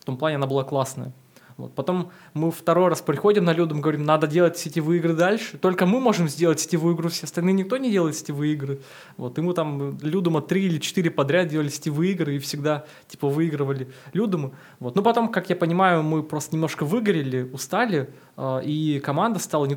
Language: Russian